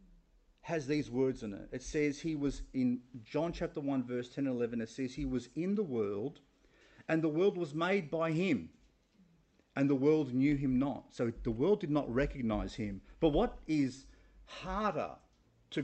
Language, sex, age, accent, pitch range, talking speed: English, male, 40-59, Australian, 130-195 Hz, 185 wpm